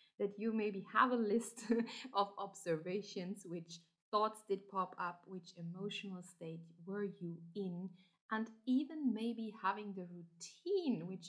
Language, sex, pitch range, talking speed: English, female, 185-250 Hz, 140 wpm